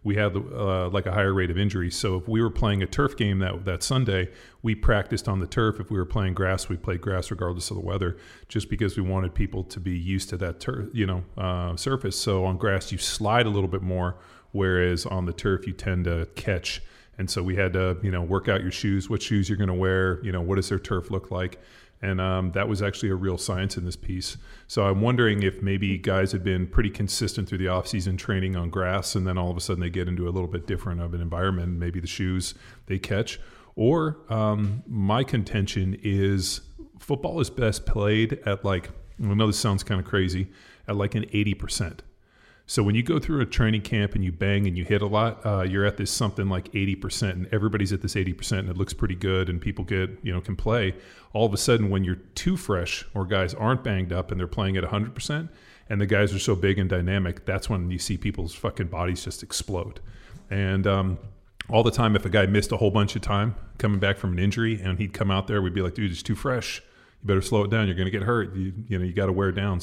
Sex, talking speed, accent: male, 250 wpm, American